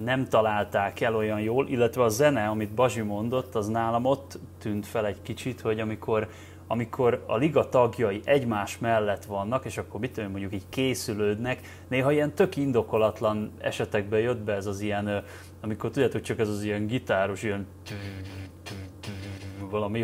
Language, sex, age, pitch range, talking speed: Hungarian, male, 30-49, 100-130 Hz, 155 wpm